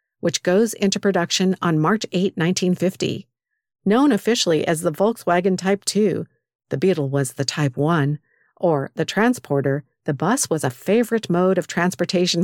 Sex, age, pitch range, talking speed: female, 50-69, 160-205 Hz, 155 wpm